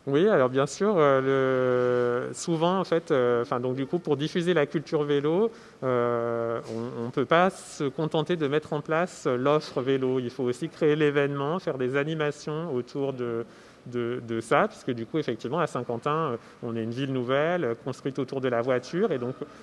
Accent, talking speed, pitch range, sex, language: French, 185 wpm, 130-160 Hz, male, French